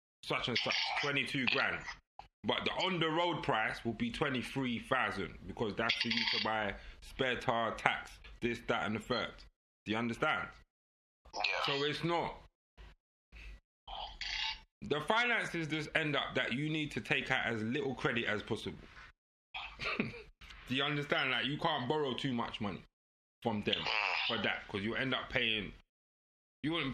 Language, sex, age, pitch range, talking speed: English, male, 20-39, 85-120 Hz, 160 wpm